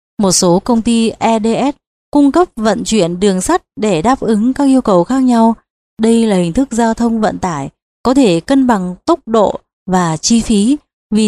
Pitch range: 200-255 Hz